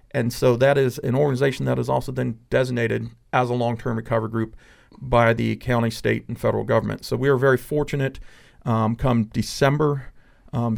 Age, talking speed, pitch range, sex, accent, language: 40-59, 180 wpm, 110-125 Hz, male, American, English